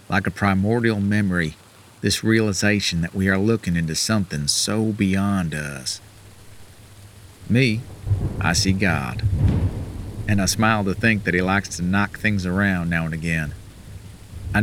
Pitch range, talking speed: 95-105 Hz, 145 wpm